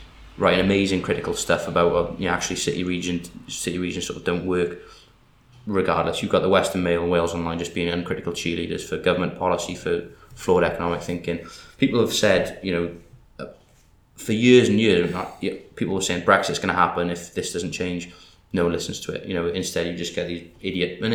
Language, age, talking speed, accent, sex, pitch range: English, 20-39, 200 wpm, British, male, 85-95 Hz